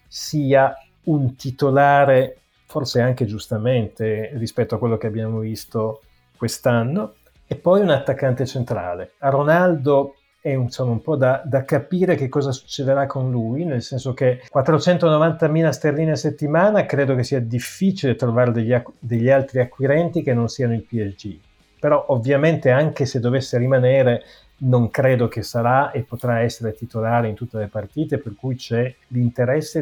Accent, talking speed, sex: native, 150 wpm, male